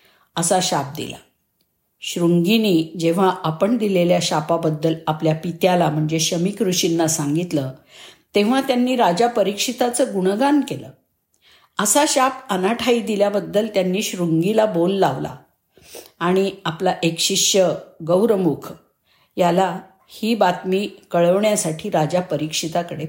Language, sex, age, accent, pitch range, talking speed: Marathi, female, 50-69, native, 170-215 Hz, 110 wpm